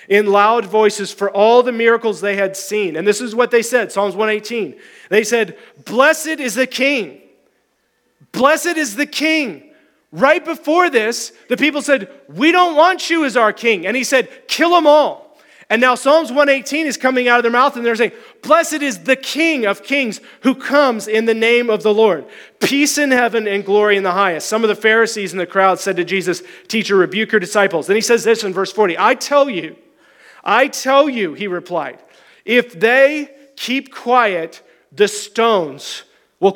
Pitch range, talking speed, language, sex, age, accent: 205-275 Hz, 195 wpm, English, male, 30-49, American